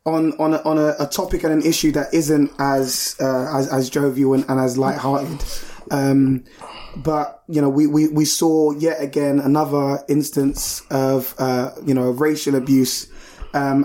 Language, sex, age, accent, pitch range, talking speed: English, male, 20-39, British, 140-160 Hz, 175 wpm